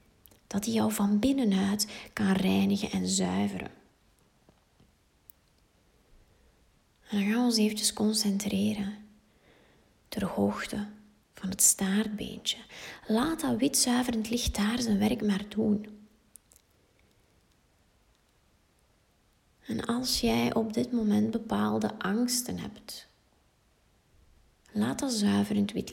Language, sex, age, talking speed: Dutch, female, 20-39, 100 wpm